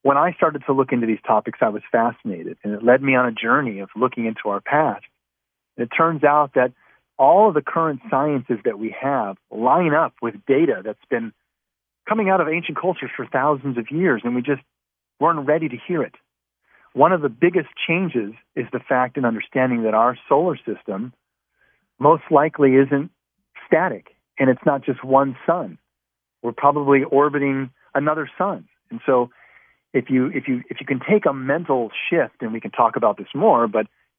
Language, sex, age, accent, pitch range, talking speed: English, male, 40-59, American, 120-160 Hz, 190 wpm